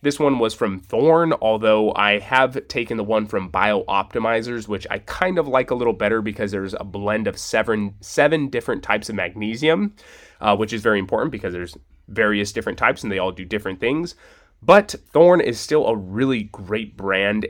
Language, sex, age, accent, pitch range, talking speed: English, male, 20-39, American, 105-130 Hz, 195 wpm